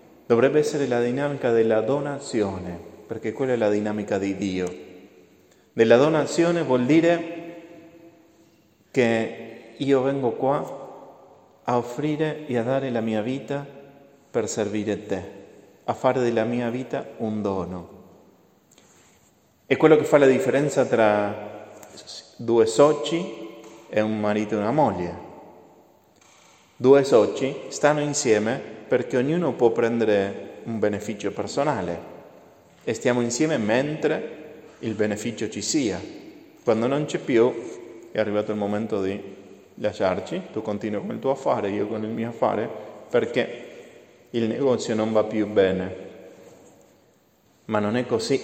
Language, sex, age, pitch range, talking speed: Italian, male, 30-49, 105-140 Hz, 130 wpm